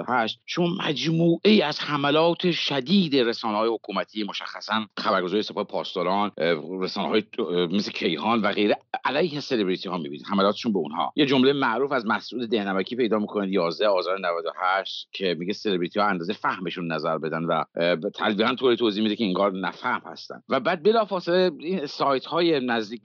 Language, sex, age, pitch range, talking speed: English, male, 50-69, 110-185 Hz, 165 wpm